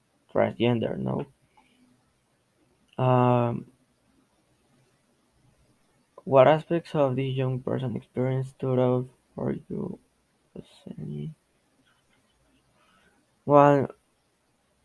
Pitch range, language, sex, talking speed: 120-135 Hz, English, male, 65 wpm